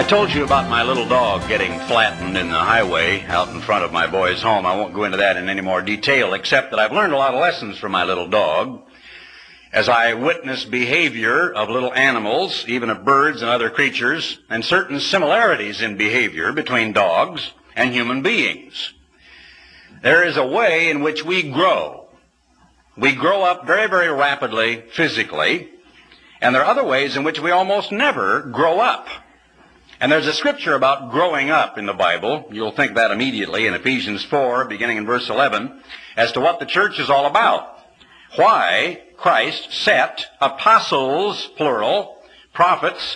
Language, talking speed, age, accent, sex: English, 175 wpm, 60-79, American, male